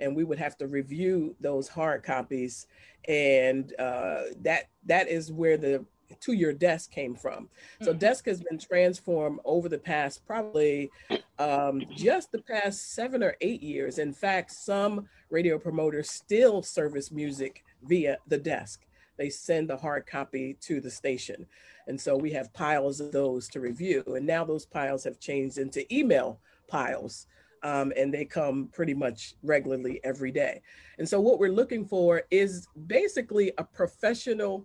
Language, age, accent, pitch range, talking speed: English, 40-59, American, 140-195 Hz, 160 wpm